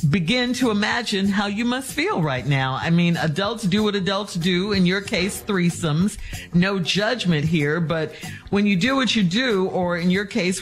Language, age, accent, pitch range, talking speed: English, 50-69, American, 155-215 Hz, 190 wpm